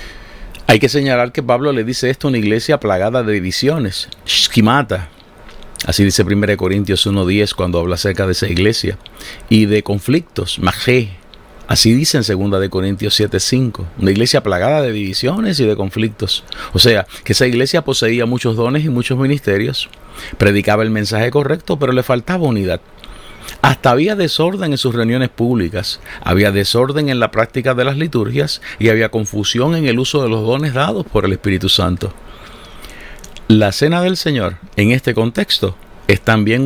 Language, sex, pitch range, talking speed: Spanish, male, 100-130 Hz, 165 wpm